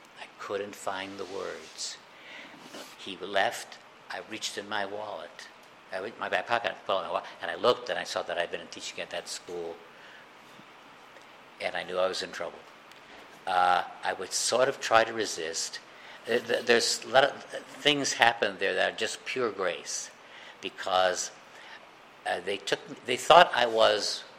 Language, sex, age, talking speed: English, male, 60-79, 170 wpm